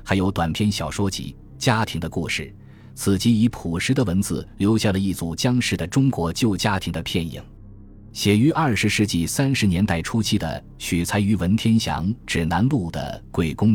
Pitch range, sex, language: 90-115 Hz, male, Chinese